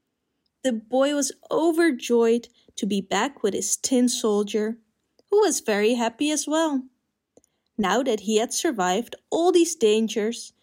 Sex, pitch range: female, 210-290 Hz